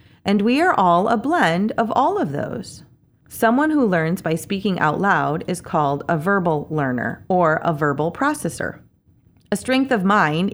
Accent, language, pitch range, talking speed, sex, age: American, English, 155-215 Hz, 170 wpm, female, 30-49